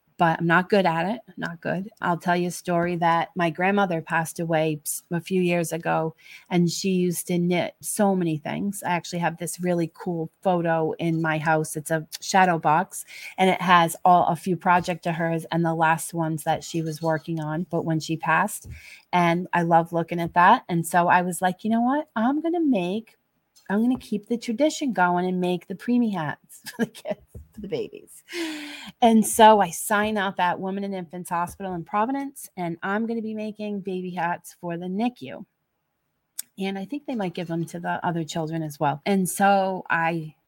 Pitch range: 165-200 Hz